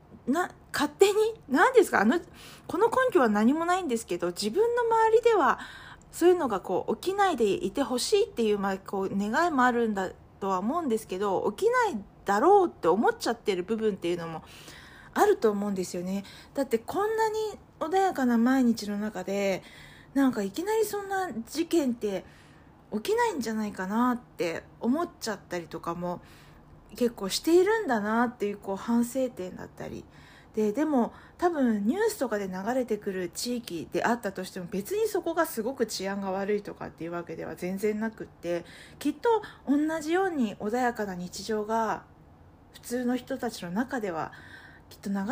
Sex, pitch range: female, 195-305 Hz